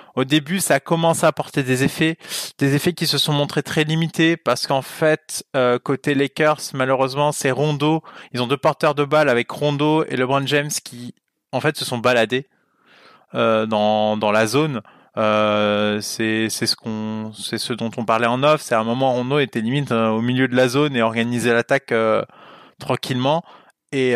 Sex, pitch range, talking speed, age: male, 120-155 Hz, 195 wpm, 20-39